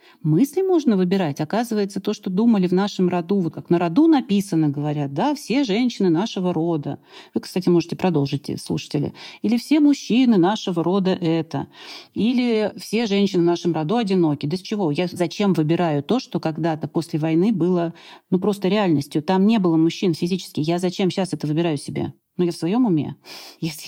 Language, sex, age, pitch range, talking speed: Russian, female, 40-59, 165-210 Hz, 180 wpm